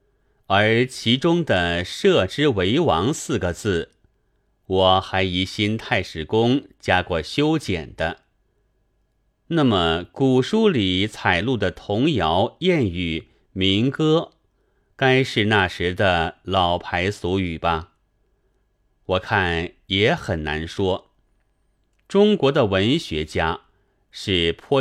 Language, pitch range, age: Chinese, 90-130 Hz, 30-49